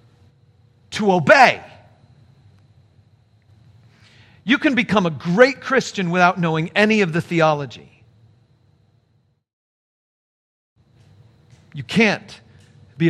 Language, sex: English, male